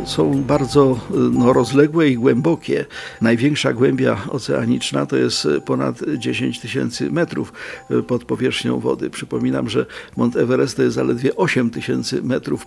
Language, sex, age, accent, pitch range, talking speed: Polish, male, 50-69, native, 125-170 Hz, 135 wpm